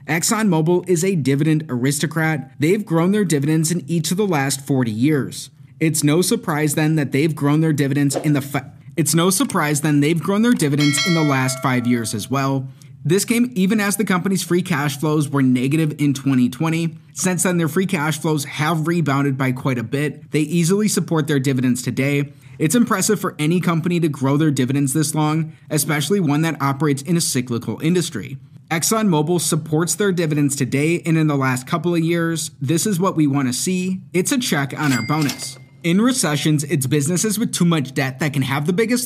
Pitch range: 140-170 Hz